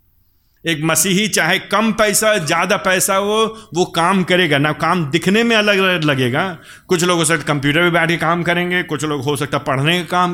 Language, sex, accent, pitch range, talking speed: Hindi, male, native, 155-190 Hz, 195 wpm